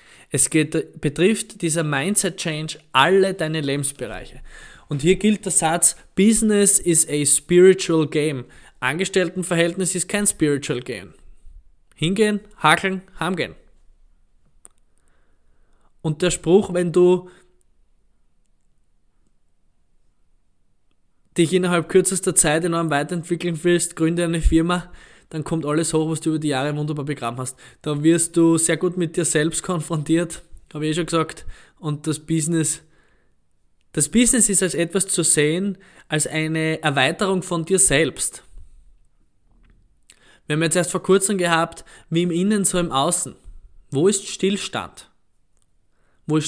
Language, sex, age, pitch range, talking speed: German, male, 20-39, 145-180 Hz, 130 wpm